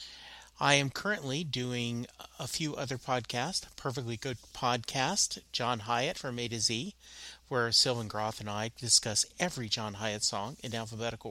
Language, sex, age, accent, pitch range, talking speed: English, male, 40-59, American, 110-140 Hz, 155 wpm